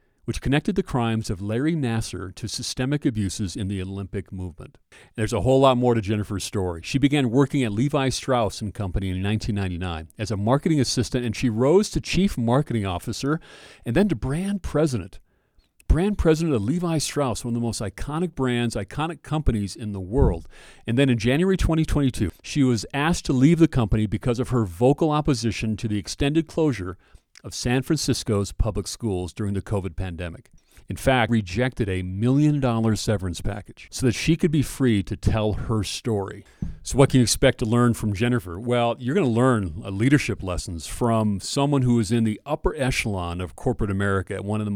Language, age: English, 40-59